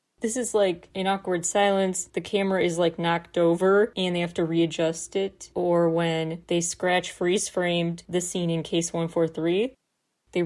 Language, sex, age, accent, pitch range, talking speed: English, female, 30-49, American, 170-205 Hz, 165 wpm